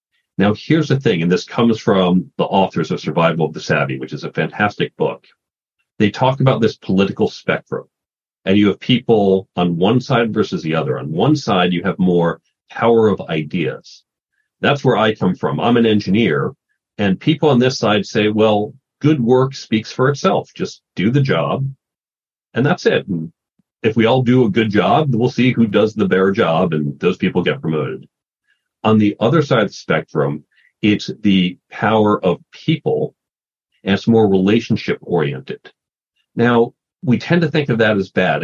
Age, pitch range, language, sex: 40-59, 95-130 Hz, English, male